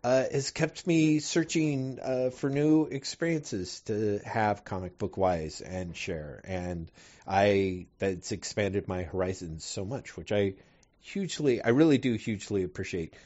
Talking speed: 145 wpm